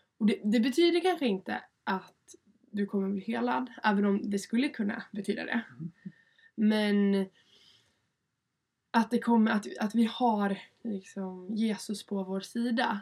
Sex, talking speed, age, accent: female, 145 wpm, 20-39, native